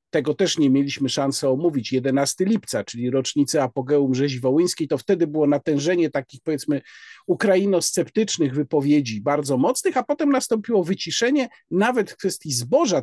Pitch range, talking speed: 150-215 Hz, 145 wpm